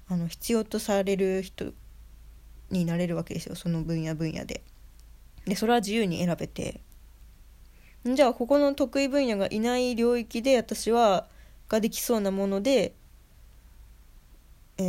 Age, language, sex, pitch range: 20-39, Japanese, female, 175-235 Hz